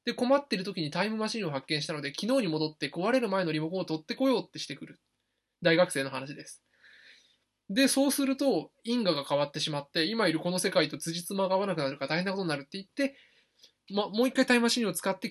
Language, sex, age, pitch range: Japanese, male, 20-39, 160-235 Hz